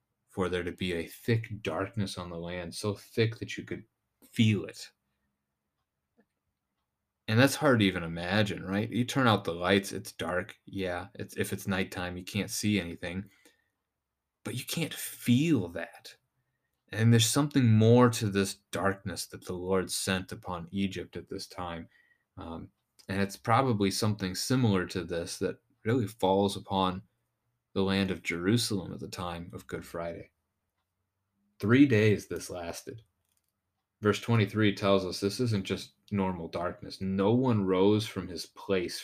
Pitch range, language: 90-110 Hz, English